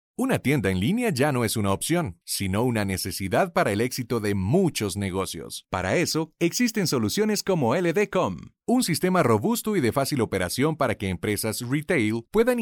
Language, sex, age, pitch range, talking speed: Spanish, male, 40-59, 100-170 Hz, 170 wpm